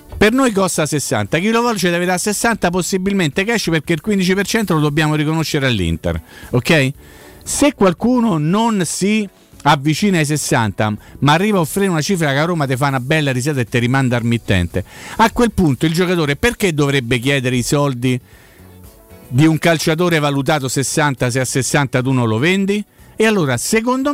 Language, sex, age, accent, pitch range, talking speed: Italian, male, 50-69, native, 125-195 Hz, 175 wpm